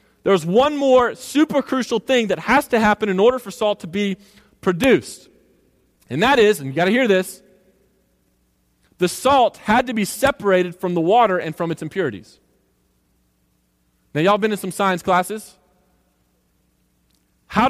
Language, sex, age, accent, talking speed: English, male, 30-49, American, 160 wpm